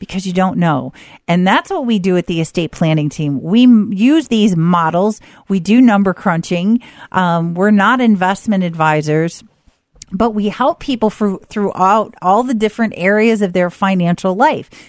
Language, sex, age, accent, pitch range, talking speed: English, female, 40-59, American, 175-230 Hz, 160 wpm